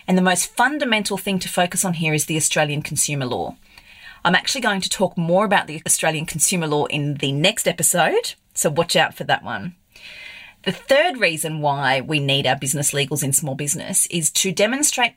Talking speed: 200 wpm